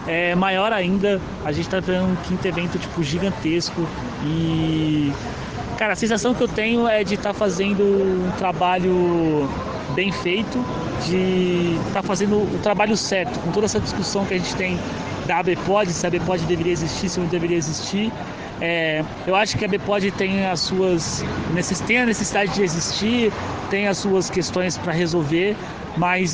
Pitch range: 160-190 Hz